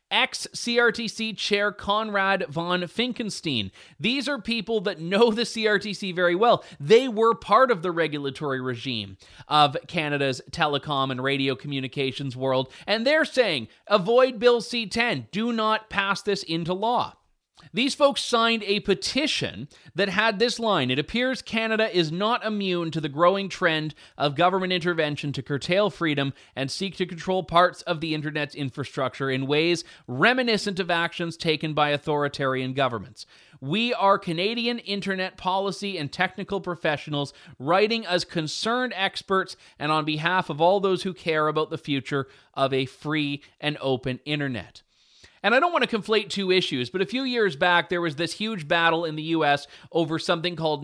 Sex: male